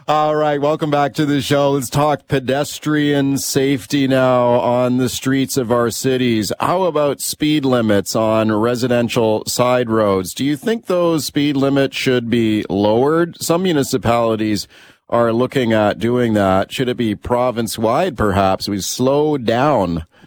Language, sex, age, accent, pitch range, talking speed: English, male, 40-59, American, 110-145 Hz, 150 wpm